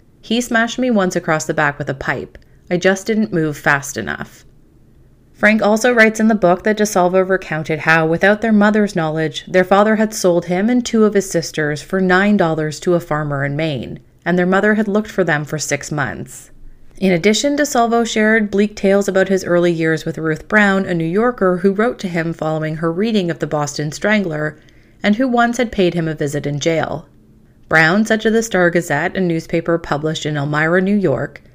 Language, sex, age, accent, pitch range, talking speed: English, female, 30-49, American, 160-210 Hz, 205 wpm